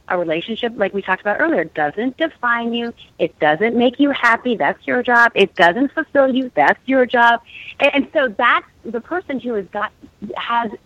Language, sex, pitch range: English, female, 190-255 Hz